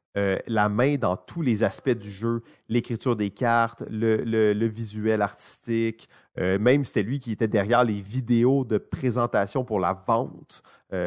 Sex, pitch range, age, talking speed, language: male, 105-130 Hz, 30-49, 170 wpm, French